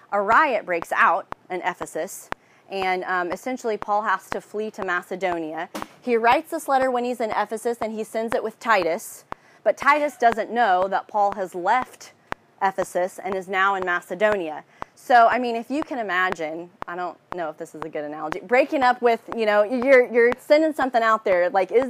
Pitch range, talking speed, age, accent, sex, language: 190-240 Hz, 195 wpm, 30-49, American, female, English